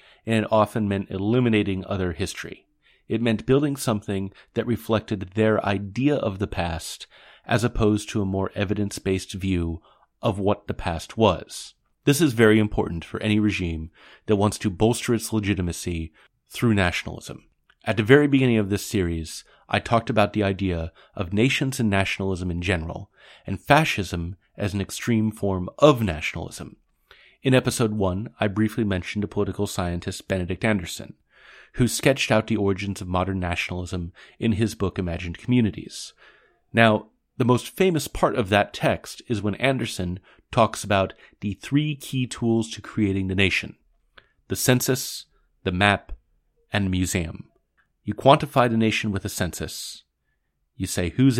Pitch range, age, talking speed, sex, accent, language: 95-115 Hz, 30-49, 155 wpm, male, American, English